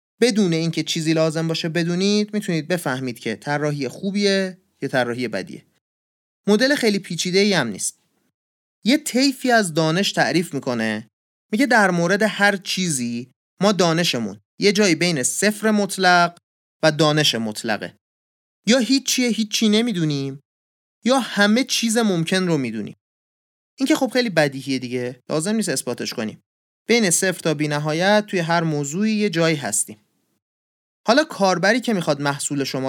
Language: Persian